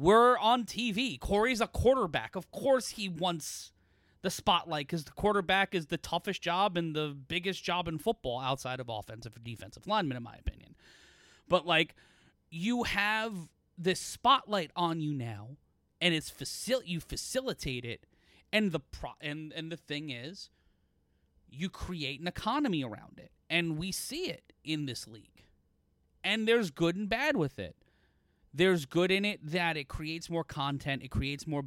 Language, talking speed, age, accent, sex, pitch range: English, 170 wpm, 30-49, American, male, 125-185 Hz